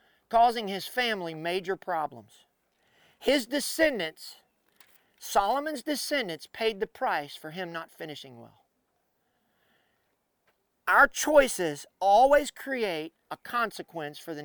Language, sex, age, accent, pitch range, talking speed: English, male, 40-59, American, 170-245 Hz, 105 wpm